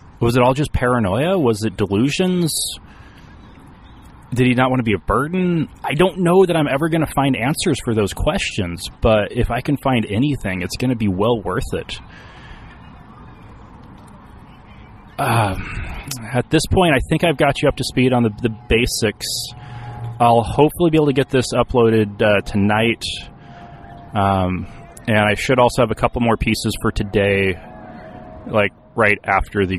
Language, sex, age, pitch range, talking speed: English, male, 30-49, 100-125 Hz, 170 wpm